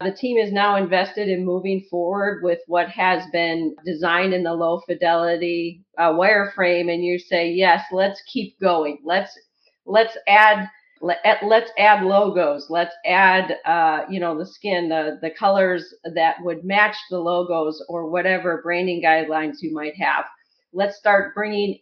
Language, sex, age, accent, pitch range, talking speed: English, female, 40-59, American, 175-220 Hz, 160 wpm